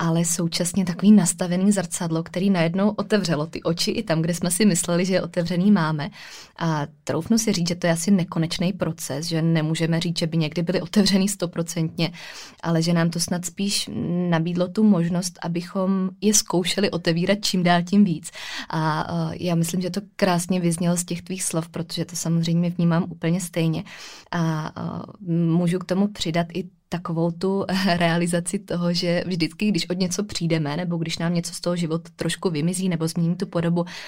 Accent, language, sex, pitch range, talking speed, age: native, Czech, female, 165-185 Hz, 180 wpm, 20-39